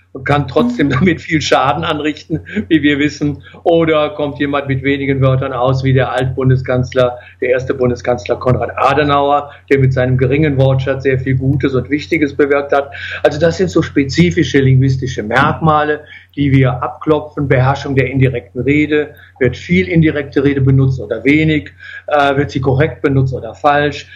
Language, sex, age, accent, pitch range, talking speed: German, male, 50-69, German, 135-155 Hz, 160 wpm